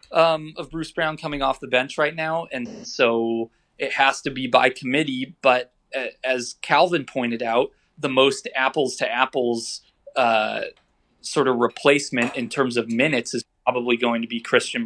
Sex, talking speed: male, 170 wpm